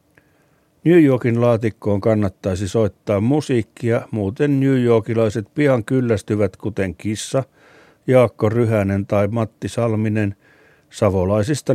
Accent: native